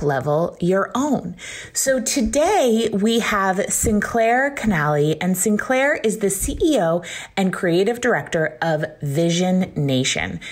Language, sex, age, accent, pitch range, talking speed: English, female, 30-49, American, 150-220 Hz, 115 wpm